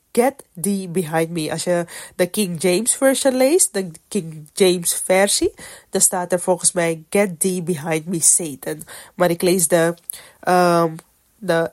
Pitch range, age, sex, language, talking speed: 175-250 Hz, 20-39, female, Dutch, 135 wpm